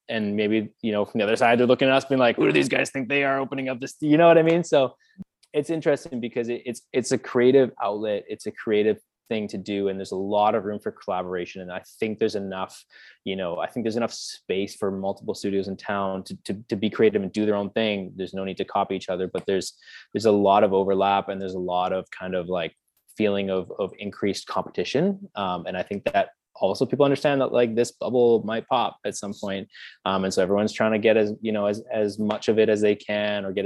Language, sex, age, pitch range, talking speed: English, male, 20-39, 95-120 Hz, 255 wpm